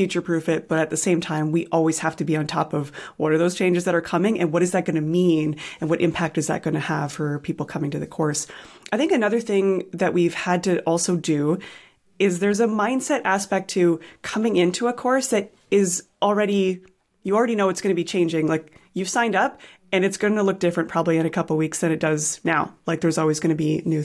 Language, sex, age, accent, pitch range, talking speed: English, female, 20-39, American, 165-205 Hz, 255 wpm